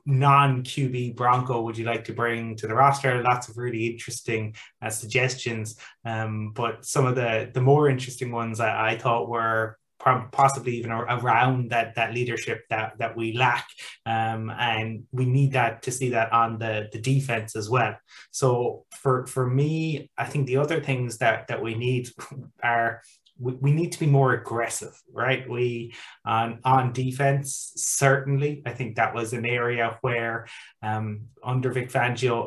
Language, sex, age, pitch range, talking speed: English, male, 20-39, 115-130 Hz, 170 wpm